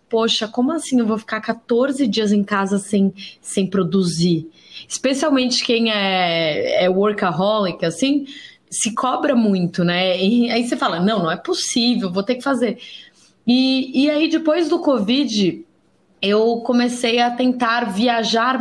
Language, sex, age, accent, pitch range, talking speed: Portuguese, female, 20-39, Brazilian, 205-255 Hz, 145 wpm